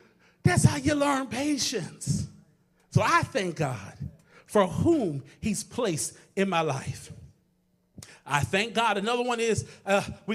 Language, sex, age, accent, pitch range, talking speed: English, male, 40-59, American, 170-285 Hz, 140 wpm